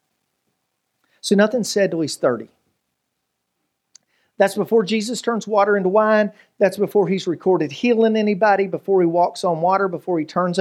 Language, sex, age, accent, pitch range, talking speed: English, male, 40-59, American, 185-245 Hz, 155 wpm